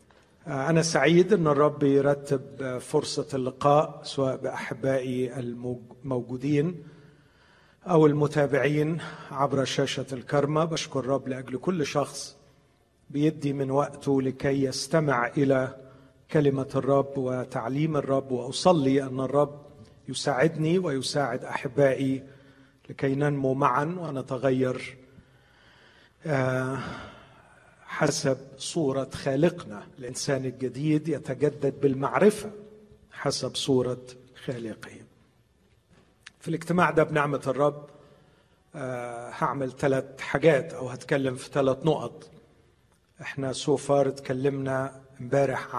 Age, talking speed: 40-59, 90 wpm